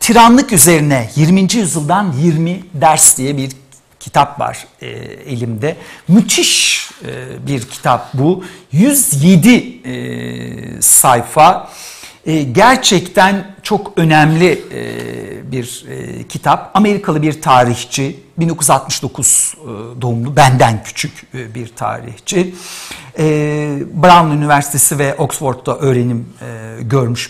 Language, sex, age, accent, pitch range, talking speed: Turkish, male, 60-79, native, 125-175 Hz, 80 wpm